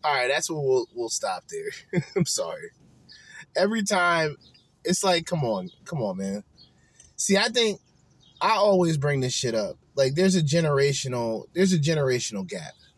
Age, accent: 20-39, American